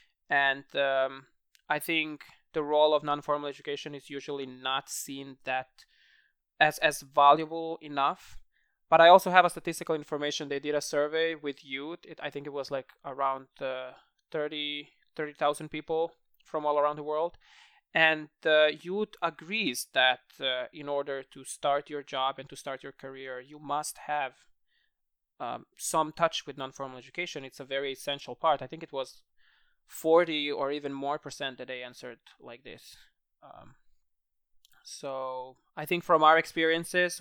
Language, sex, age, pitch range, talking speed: English, male, 20-39, 135-155 Hz, 160 wpm